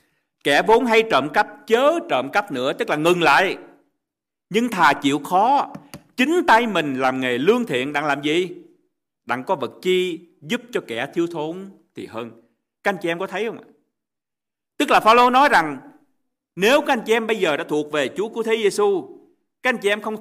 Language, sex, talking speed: Vietnamese, male, 210 wpm